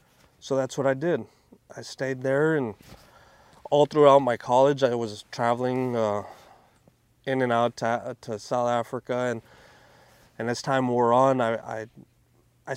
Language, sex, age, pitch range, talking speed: English, male, 30-49, 110-125 Hz, 155 wpm